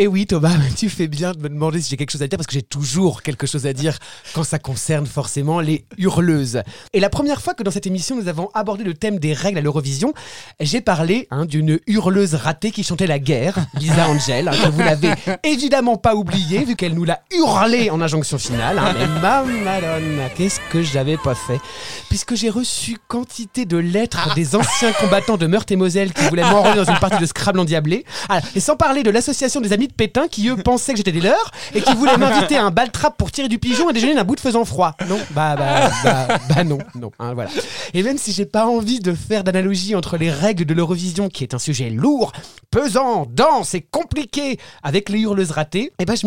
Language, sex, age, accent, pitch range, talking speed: French, male, 30-49, French, 155-215 Hz, 235 wpm